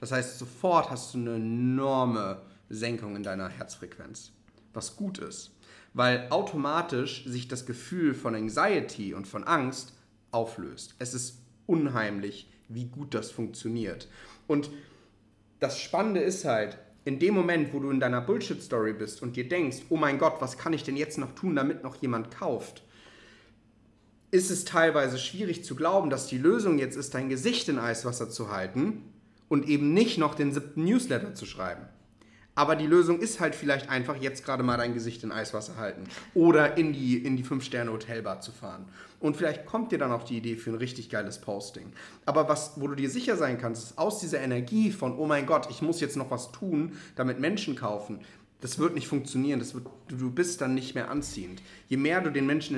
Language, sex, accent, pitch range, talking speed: German, male, German, 115-150 Hz, 195 wpm